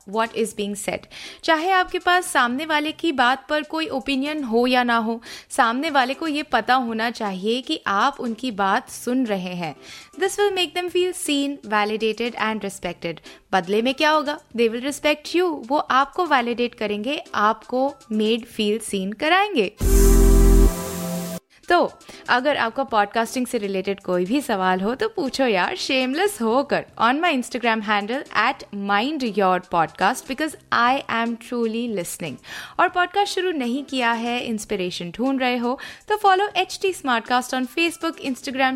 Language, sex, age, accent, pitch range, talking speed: Hindi, female, 20-39, native, 215-300 Hz, 160 wpm